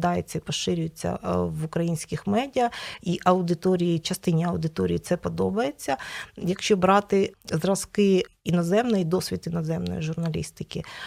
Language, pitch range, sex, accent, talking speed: Ukrainian, 165-190 Hz, female, native, 100 wpm